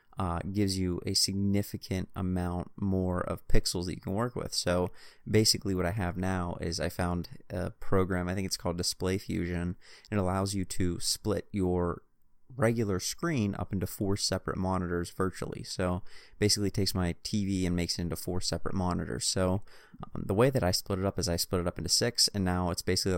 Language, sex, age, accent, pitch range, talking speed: English, male, 30-49, American, 90-100 Hz, 200 wpm